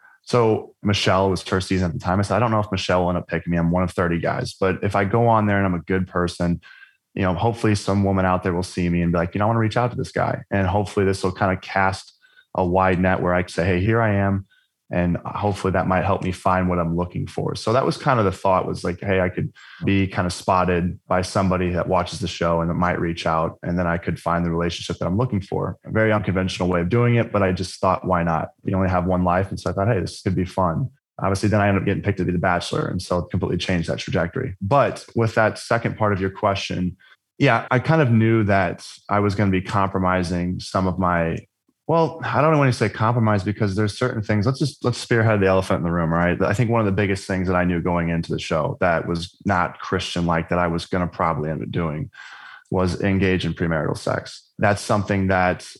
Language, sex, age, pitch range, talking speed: English, male, 20-39, 90-105 Hz, 270 wpm